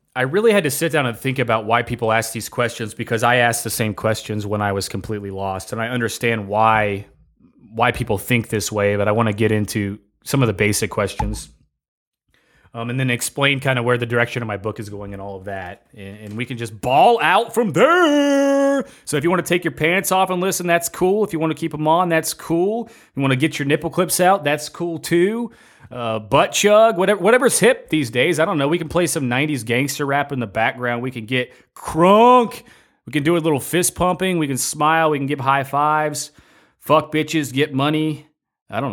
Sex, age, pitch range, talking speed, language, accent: male, 30-49, 110-155 Hz, 235 wpm, English, American